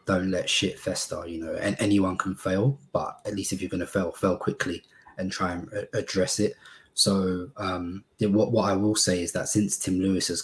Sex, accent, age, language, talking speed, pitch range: male, British, 20-39, English, 220 wpm, 90-100 Hz